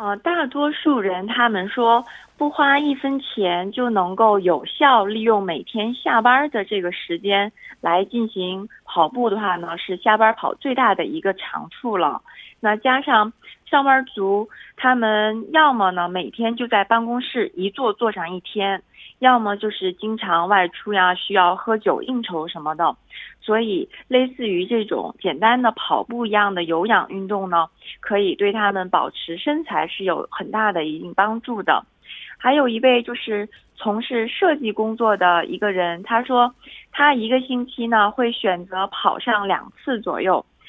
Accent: Chinese